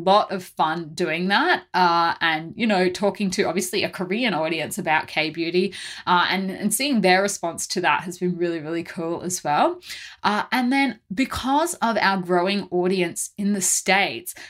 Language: English